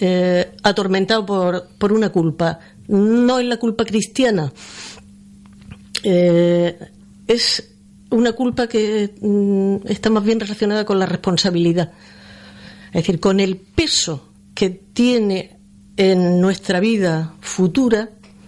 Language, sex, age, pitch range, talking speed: Spanish, female, 50-69, 170-210 Hz, 115 wpm